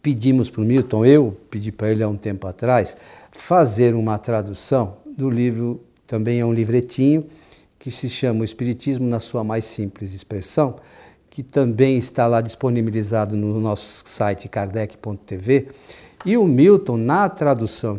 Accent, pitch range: Brazilian, 115-155 Hz